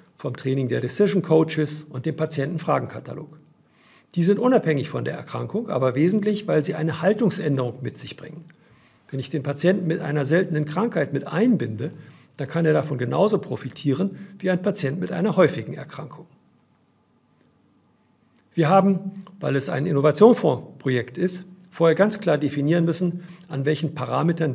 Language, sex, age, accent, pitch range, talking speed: German, male, 50-69, German, 140-180 Hz, 150 wpm